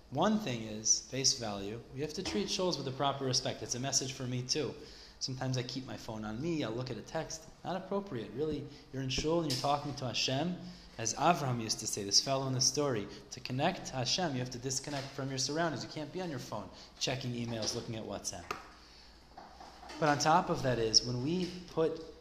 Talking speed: 225 wpm